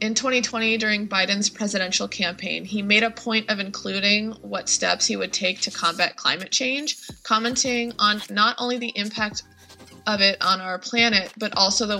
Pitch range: 195-230 Hz